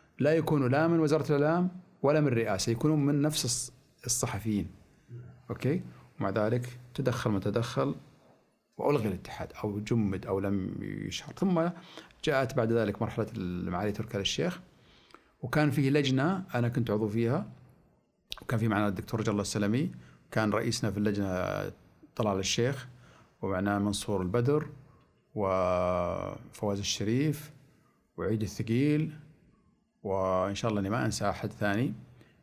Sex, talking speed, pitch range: male, 125 wpm, 105-150 Hz